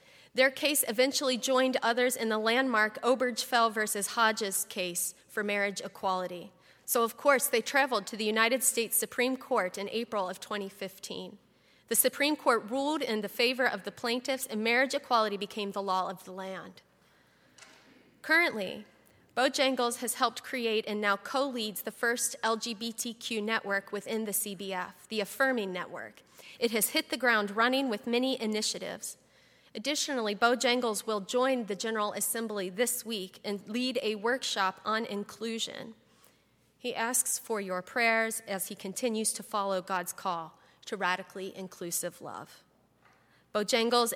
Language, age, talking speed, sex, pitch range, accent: English, 30-49, 145 wpm, female, 200-245 Hz, American